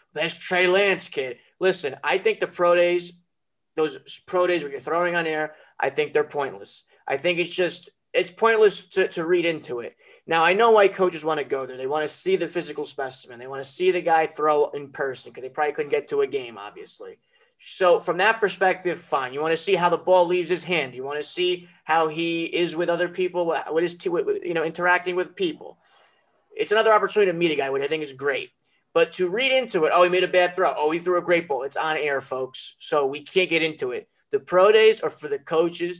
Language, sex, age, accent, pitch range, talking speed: English, male, 30-49, American, 155-220 Hz, 245 wpm